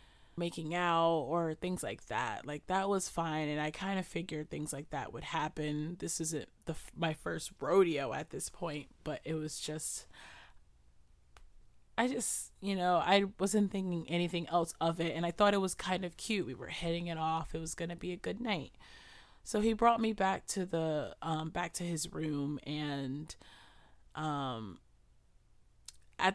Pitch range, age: 150-180 Hz, 30-49